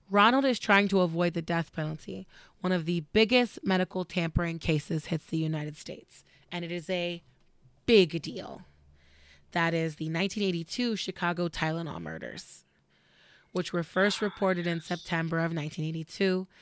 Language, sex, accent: English, female, American